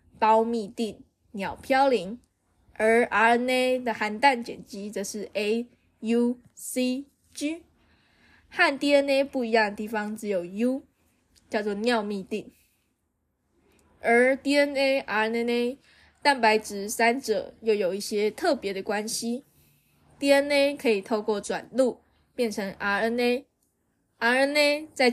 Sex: female